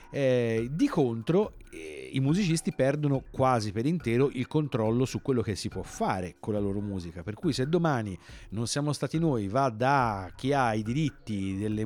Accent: native